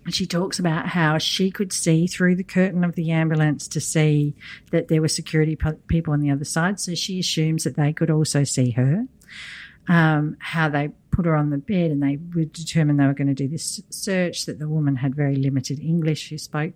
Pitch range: 145-180 Hz